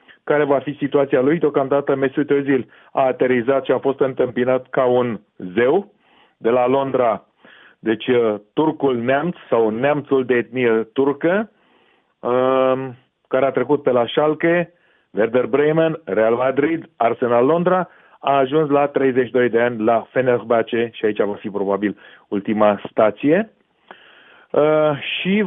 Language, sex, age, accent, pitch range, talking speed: Romanian, male, 40-59, native, 120-145 Hz, 140 wpm